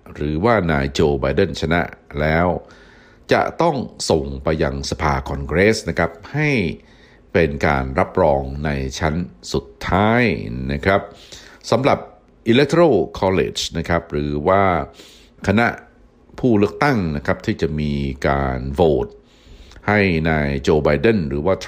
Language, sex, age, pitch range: Thai, male, 60-79, 70-90 Hz